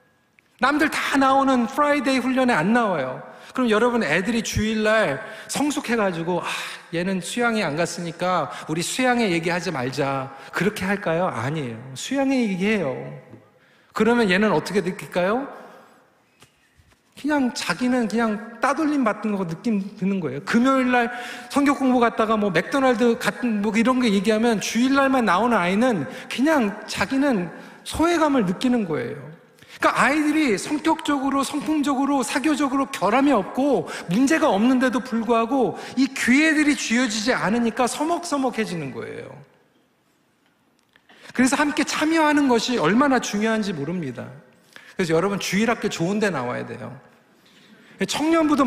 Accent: native